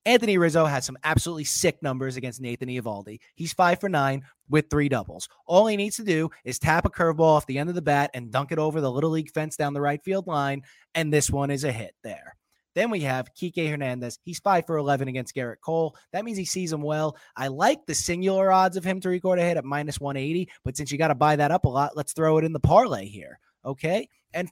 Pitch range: 140-180 Hz